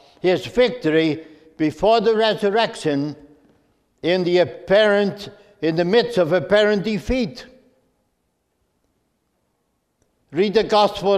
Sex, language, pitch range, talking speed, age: male, English, 165-210 Hz, 90 wpm, 60-79